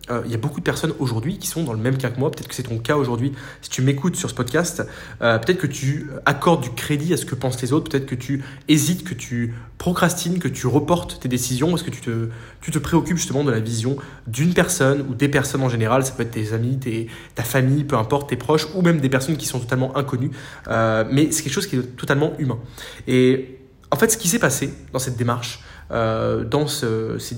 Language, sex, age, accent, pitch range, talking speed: French, male, 20-39, French, 125-155 Hz, 240 wpm